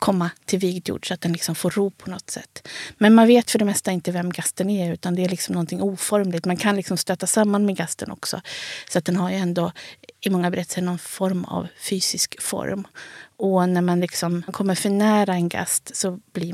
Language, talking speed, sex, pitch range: Swedish, 220 wpm, female, 180-205 Hz